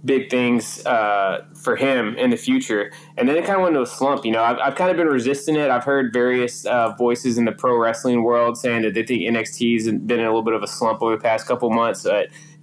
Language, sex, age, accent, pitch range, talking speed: English, male, 20-39, American, 115-125 Hz, 265 wpm